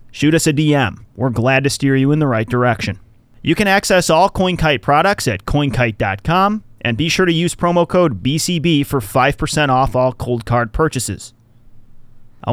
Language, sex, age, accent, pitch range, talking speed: English, male, 30-49, American, 115-150 Hz, 175 wpm